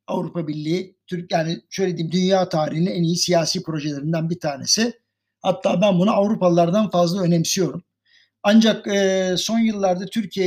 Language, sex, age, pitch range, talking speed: Turkish, male, 60-79, 170-210 Hz, 130 wpm